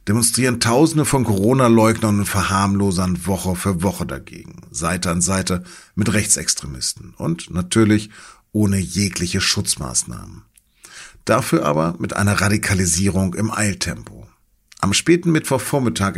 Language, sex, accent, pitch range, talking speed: German, male, German, 95-115 Hz, 110 wpm